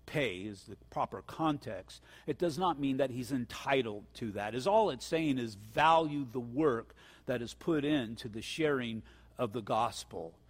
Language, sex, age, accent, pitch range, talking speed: English, male, 50-69, American, 110-145 Hz, 170 wpm